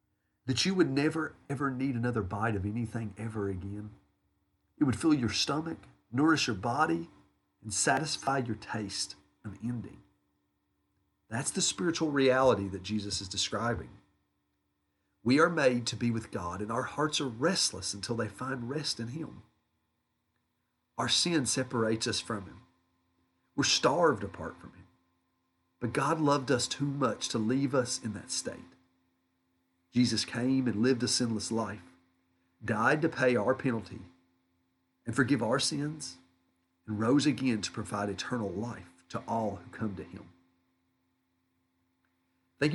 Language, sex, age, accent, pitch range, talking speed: English, male, 40-59, American, 85-125 Hz, 145 wpm